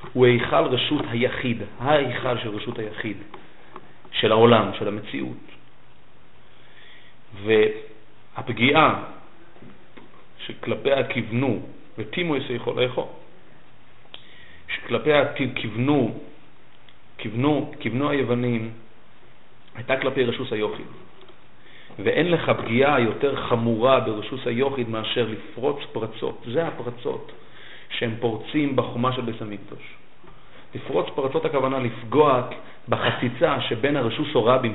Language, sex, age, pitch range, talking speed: Hebrew, male, 40-59, 115-140 Hz, 90 wpm